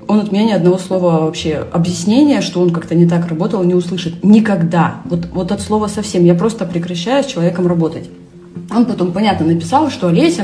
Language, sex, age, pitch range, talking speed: Russian, female, 30-49, 170-230 Hz, 195 wpm